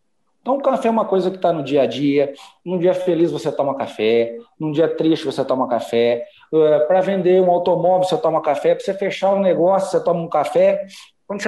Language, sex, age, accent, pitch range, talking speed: Portuguese, male, 40-59, Brazilian, 145-205 Hz, 225 wpm